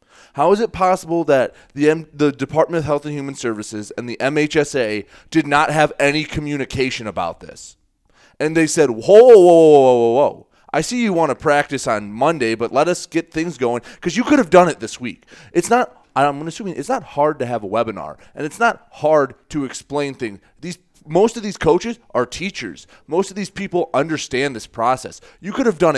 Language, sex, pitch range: English, male, 125-155 Hz